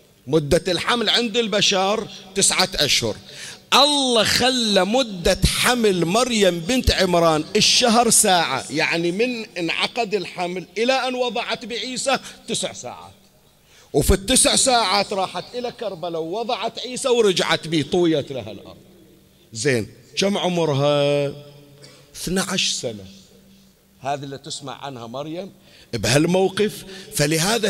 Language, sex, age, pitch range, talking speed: Arabic, male, 50-69, 165-225 Hz, 105 wpm